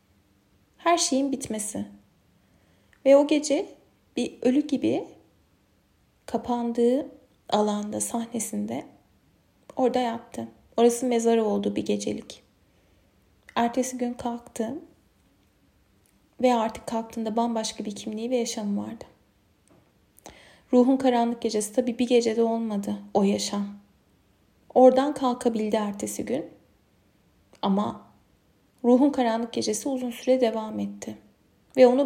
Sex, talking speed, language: female, 100 wpm, Turkish